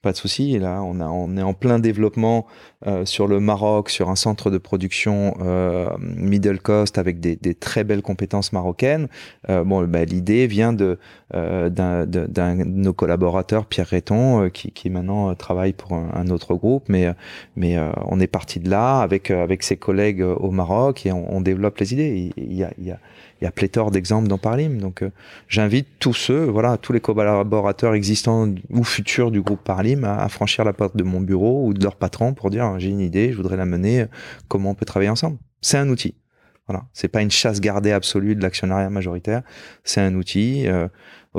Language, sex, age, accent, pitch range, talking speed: French, male, 30-49, French, 95-110 Hz, 215 wpm